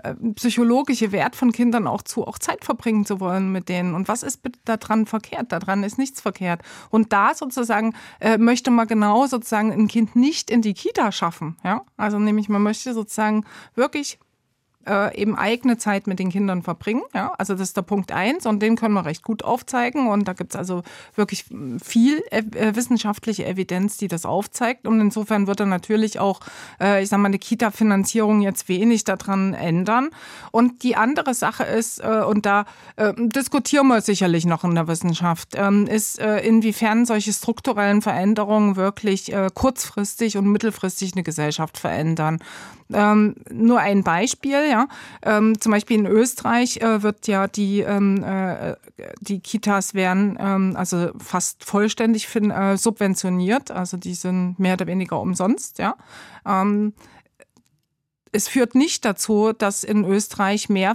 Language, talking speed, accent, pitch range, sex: German, 160 wpm, German, 190-225 Hz, female